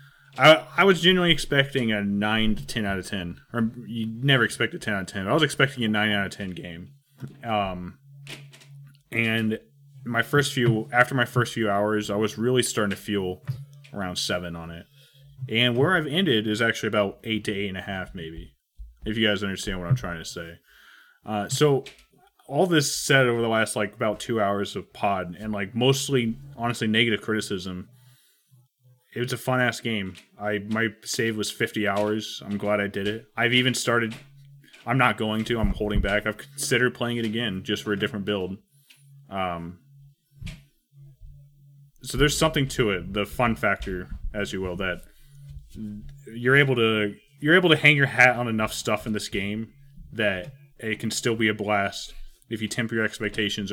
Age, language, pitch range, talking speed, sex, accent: 30-49, English, 105-135 Hz, 190 wpm, male, American